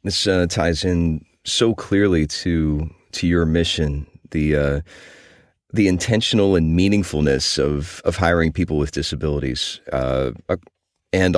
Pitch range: 75-95 Hz